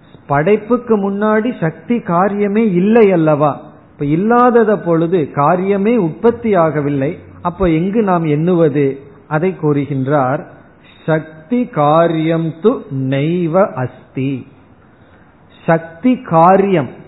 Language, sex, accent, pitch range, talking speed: Tamil, male, native, 140-180 Hz, 65 wpm